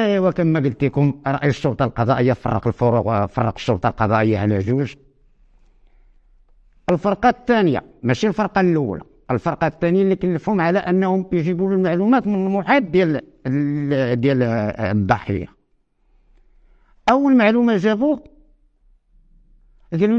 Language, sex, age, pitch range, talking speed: French, male, 50-69, 150-240 Hz, 105 wpm